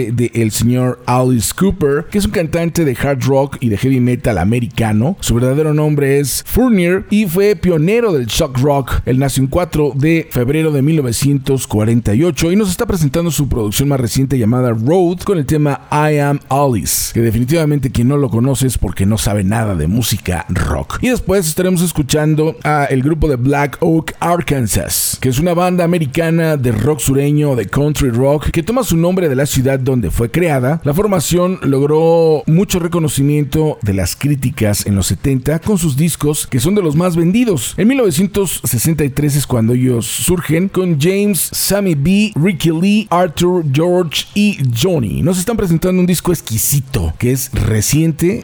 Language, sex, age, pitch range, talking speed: Spanish, male, 40-59, 125-170 Hz, 175 wpm